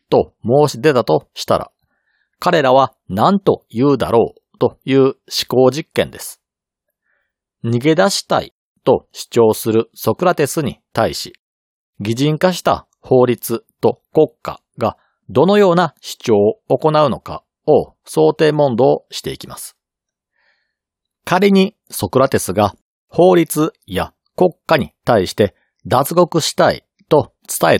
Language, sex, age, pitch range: Japanese, male, 40-59, 115-180 Hz